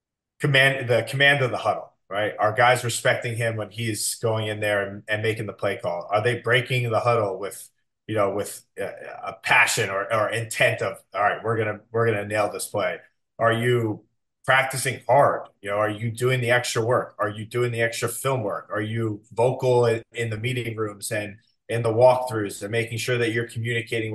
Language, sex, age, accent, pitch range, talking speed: English, male, 30-49, American, 110-130 Hz, 215 wpm